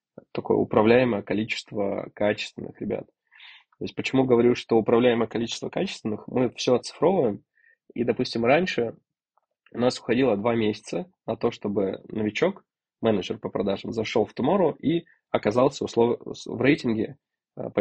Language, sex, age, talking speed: Russian, male, 20-39, 125 wpm